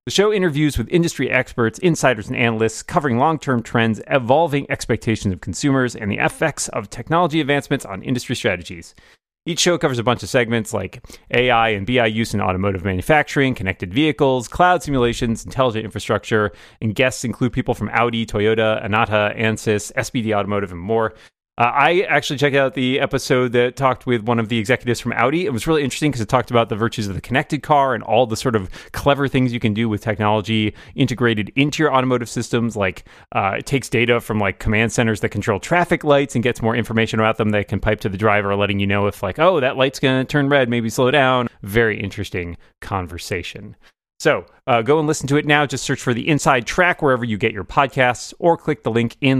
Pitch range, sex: 110-135 Hz, male